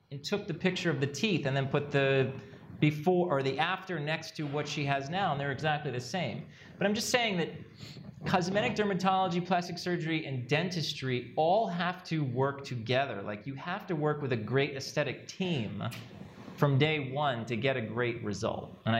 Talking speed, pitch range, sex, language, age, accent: 195 wpm, 130-175 Hz, male, English, 30-49, American